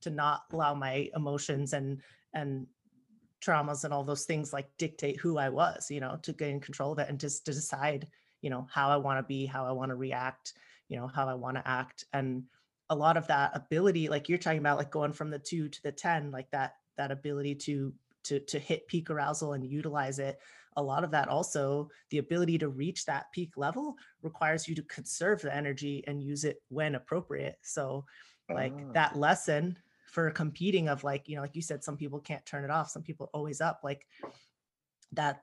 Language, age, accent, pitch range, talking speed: English, 30-49, American, 135-155 Hz, 215 wpm